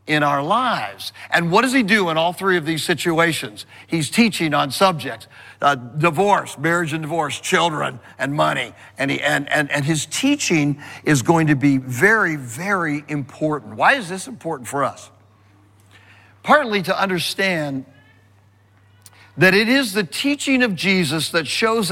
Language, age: English, 60-79